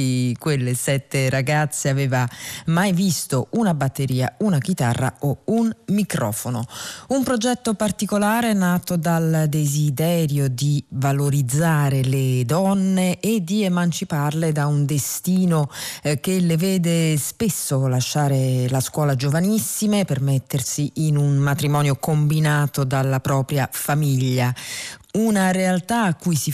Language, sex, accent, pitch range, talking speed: Italian, female, native, 140-185 Hz, 115 wpm